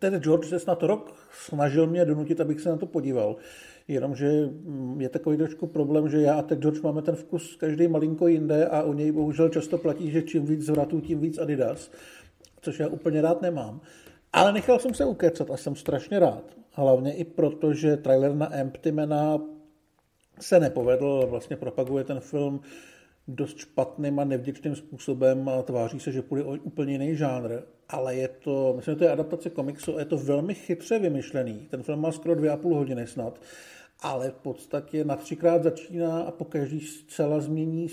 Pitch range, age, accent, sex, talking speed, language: 135-165 Hz, 50-69, native, male, 185 wpm, Czech